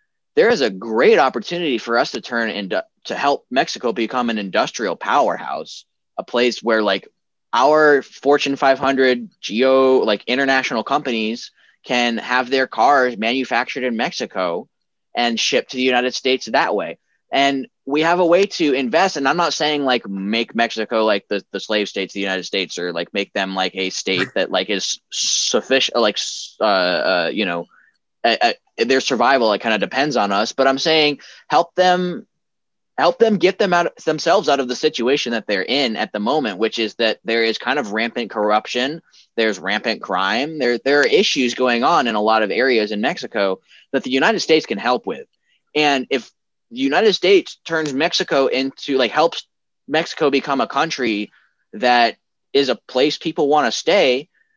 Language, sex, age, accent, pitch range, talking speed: English, male, 20-39, American, 110-150 Hz, 185 wpm